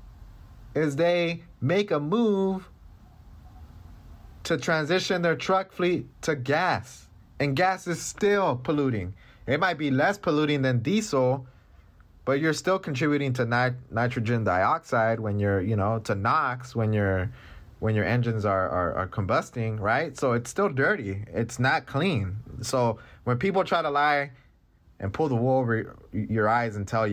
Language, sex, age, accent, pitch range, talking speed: English, male, 20-39, American, 95-135 Hz, 155 wpm